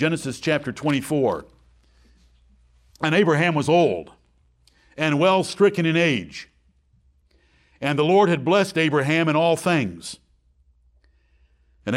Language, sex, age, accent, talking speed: English, male, 60-79, American, 110 wpm